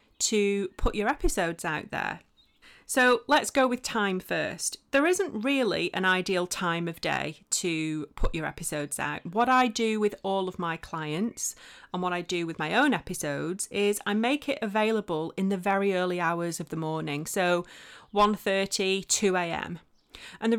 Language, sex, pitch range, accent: English, female, 175-240 Hz, British